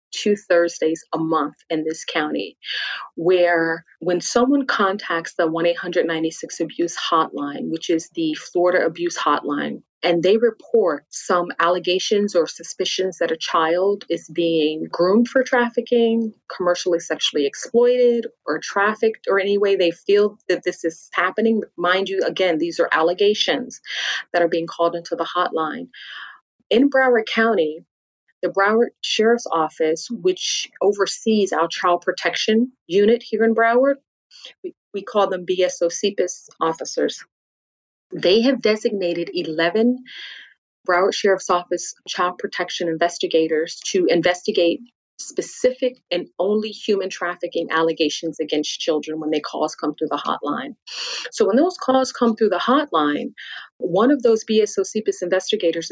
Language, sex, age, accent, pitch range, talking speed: English, female, 30-49, American, 165-225 Hz, 135 wpm